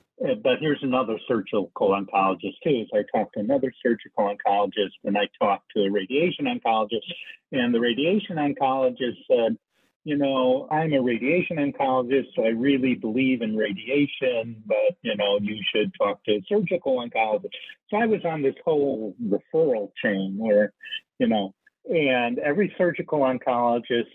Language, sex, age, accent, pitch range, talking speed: English, male, 50-69, American, 105-150 Hz, 155 wpm